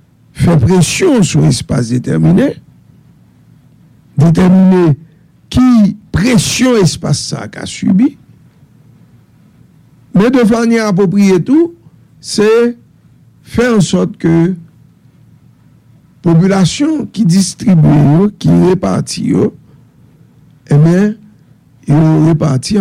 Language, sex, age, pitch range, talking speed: English, male, 60-79, 150-195 Hz, 85 wpm